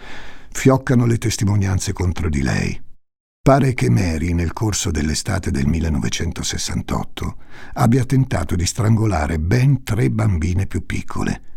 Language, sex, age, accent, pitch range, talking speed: Italian, male, 60-79, native, 85-115 Hz, 120 wpm